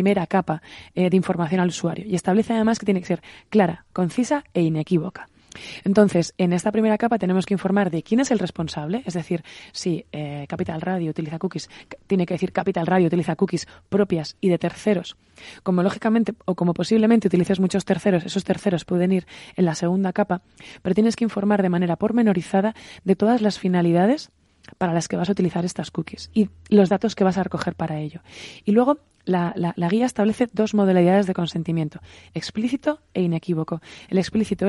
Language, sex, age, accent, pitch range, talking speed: Spanish, female, 20-39, Spanish, 175-210 Hz, 190 wpm